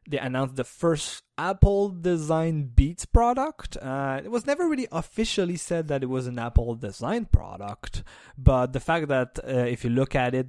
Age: 20-39